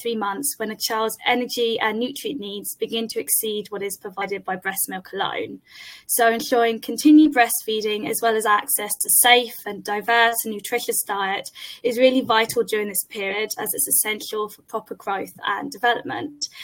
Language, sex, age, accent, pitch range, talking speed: English, female, 10-29, British, 215-250 Hz, 175 wpm